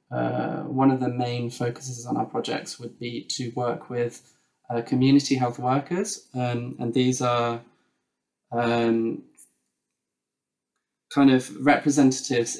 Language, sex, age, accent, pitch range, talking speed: English, male, 20-39, British, 115-130 Hz, 125 wpm